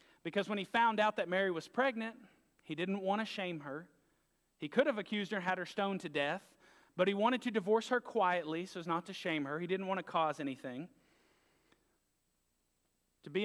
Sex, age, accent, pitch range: male, 40-59, American, 175-215 Hz